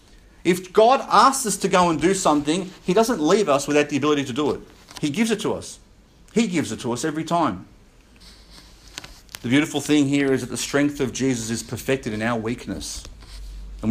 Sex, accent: male, Australian